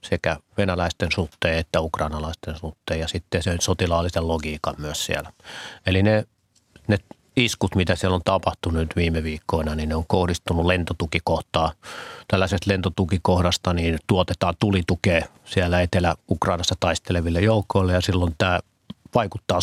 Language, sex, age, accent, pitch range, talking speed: Finnish, male, 30-49, native, 85-100 Hz, 130 wpm